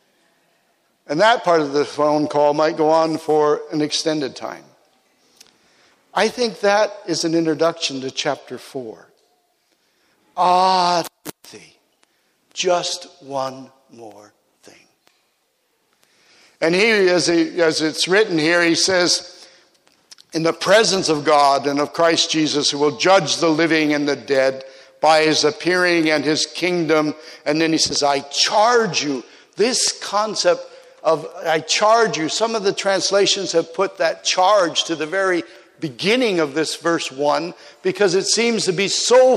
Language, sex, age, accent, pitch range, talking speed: English, male, 60-79, American, 155-205 Hz, 145 wpm